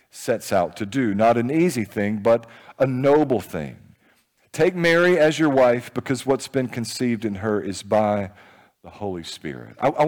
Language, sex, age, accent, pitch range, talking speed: English, male, 50-69, American, 130-190 Hz, 180 wpm